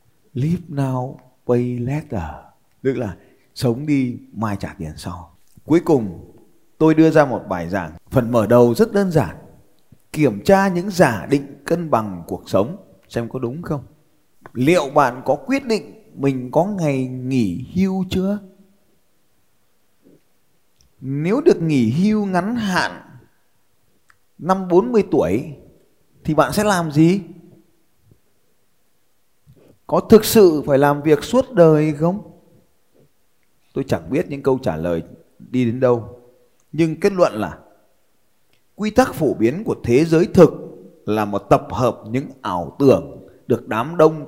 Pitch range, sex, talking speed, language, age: 125-175 Hz, male, 140 wpm, Vietnamese, 20-39